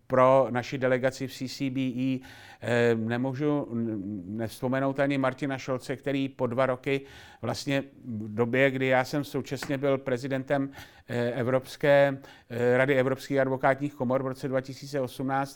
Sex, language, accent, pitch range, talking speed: male, Czech, native, 125-140 Hz, 115 wpm